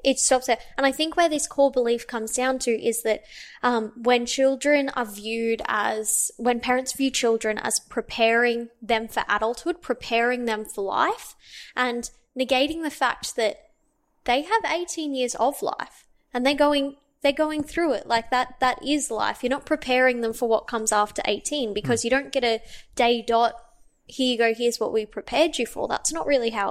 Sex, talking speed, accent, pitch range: female, 195 wpm, Australian, 225-270 Hz